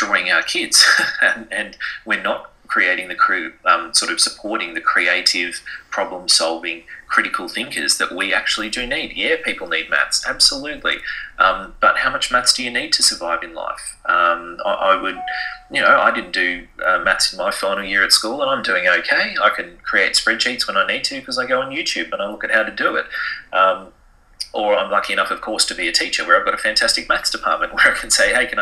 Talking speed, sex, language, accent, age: 220 wpm, male, English, Australian, 30-49